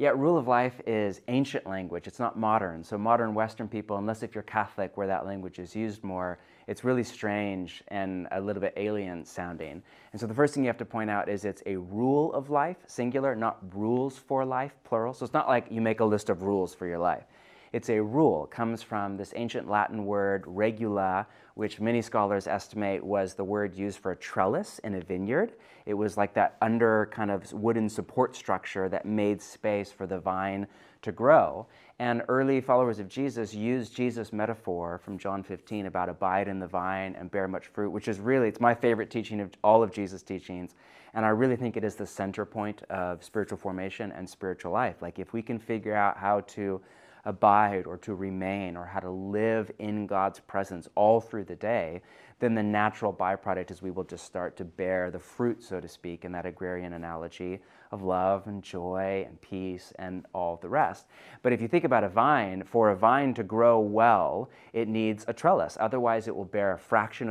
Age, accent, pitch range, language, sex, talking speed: 30-49, American, 95-115 Hz, English, male, 210 wpm